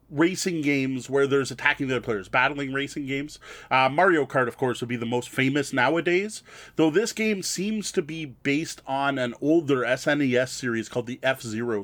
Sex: male